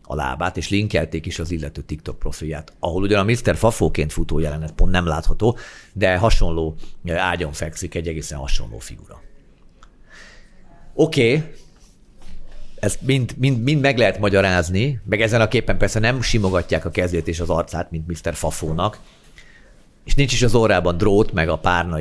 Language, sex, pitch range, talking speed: Hungarian, male, 80-110 Hz, 165 wpm